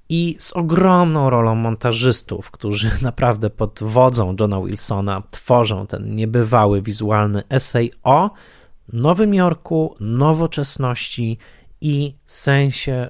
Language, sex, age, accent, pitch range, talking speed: Polish, male, 30-49, native, 110-135 Hz, 100 wpm